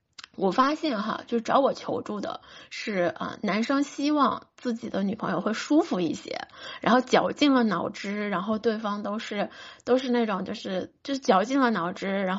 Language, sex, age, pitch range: Chinese, female, 20-39, 200-255 Hz